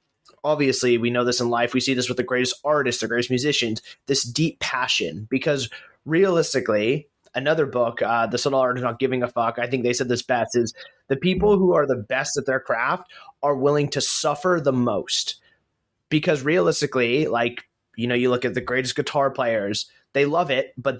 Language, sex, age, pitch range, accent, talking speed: English, male, 30-49, 125-150 Hz, American, 200 wpm